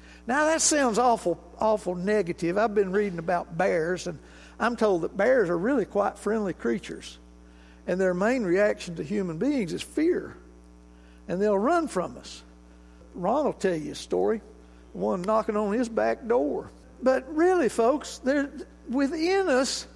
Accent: American